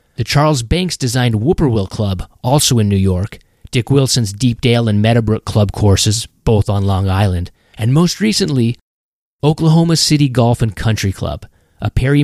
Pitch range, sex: 105-135 Hz, male